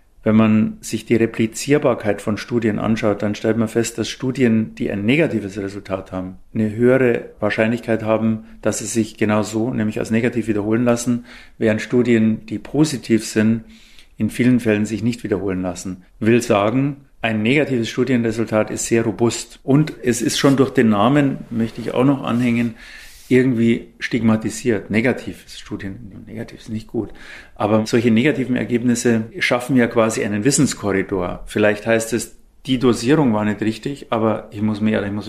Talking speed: 165 wpm